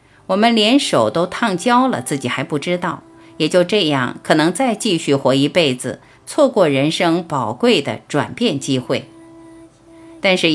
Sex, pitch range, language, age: female, 140-210 Hz, Chinese, 50-69